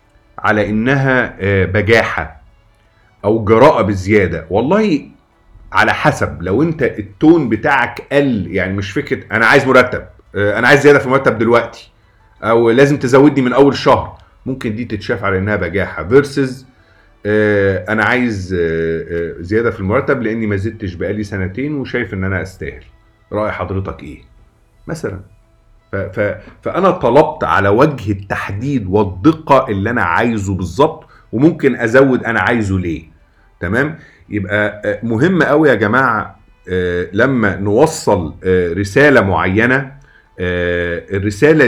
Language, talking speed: Arabic, 120 wpm